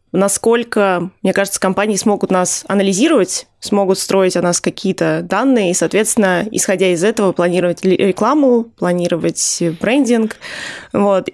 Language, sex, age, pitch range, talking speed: Russian, female, 20-39, 180-215 Hz, 120 wpm